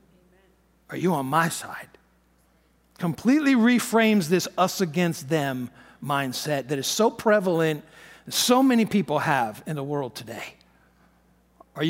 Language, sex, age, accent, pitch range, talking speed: English, male, 50-69, American, 150-195 Hz, 125 wpm